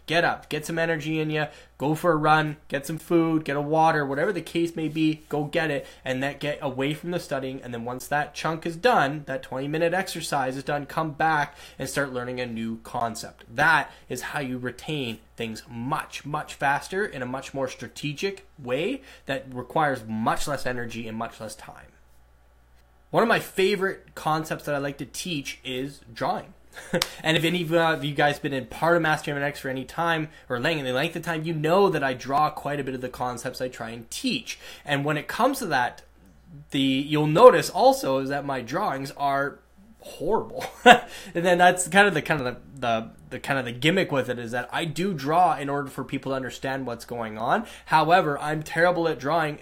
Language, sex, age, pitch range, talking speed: English, male, 10-29, 130-160 Hz, 215 wpm